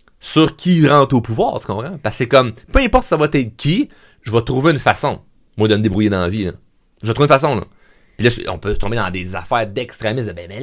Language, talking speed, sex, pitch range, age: French, 265 wpm, male, 105-140 Hz, 30-49